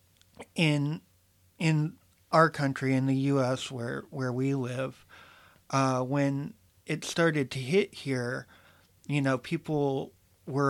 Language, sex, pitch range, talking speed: English, male, 125-145 Hz, 125 wpm